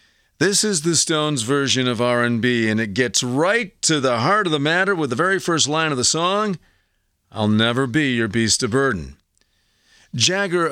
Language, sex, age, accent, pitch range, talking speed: English, male, 50-69, American, 115-155 Hz, 185 wpm